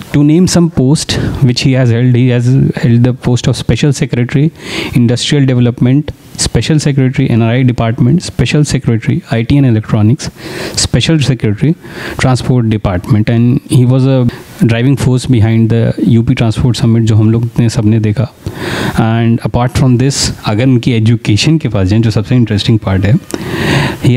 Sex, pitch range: male, 115-140 Hz